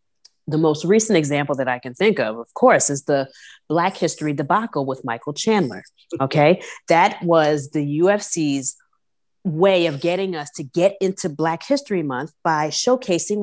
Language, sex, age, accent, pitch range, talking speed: English, female, 30-49, American, 150-205 Hz, 160 wpm